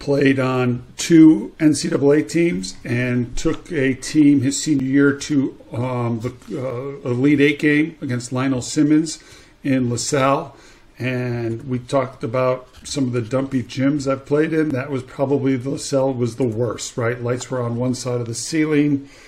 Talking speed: 160 wpm